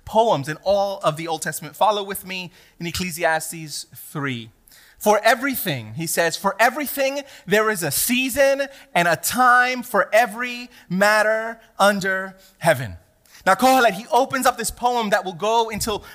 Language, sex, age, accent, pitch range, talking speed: English, male, 30-49, American, 185-240 Hz, 155 wpm